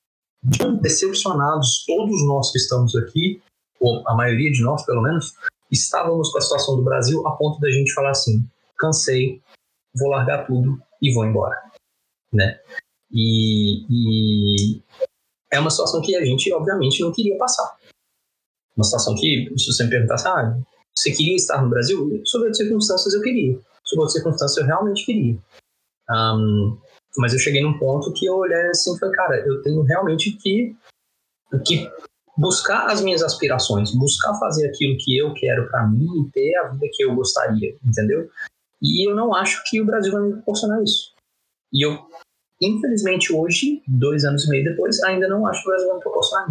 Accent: Brazilian